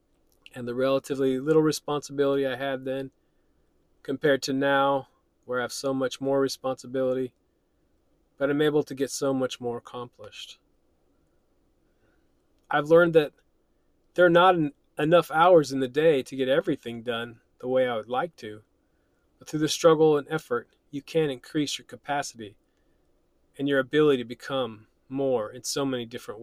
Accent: American